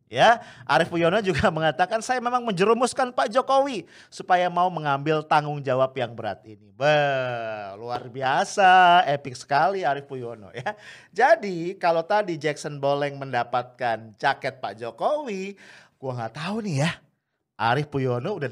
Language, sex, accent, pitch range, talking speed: English, male, Indonesian, 140-200 Hz, 140 wpm